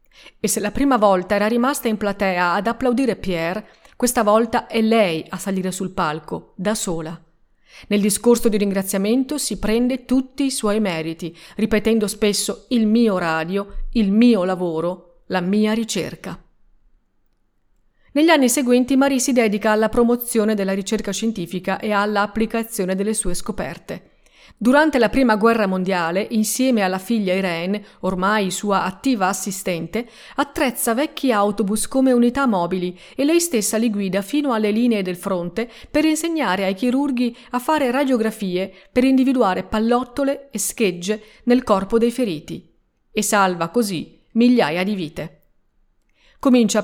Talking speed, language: 140 wpm, Italian